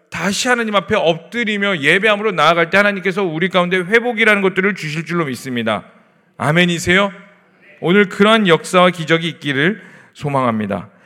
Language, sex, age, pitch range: Korean, male, 40-59, 155-210 Hz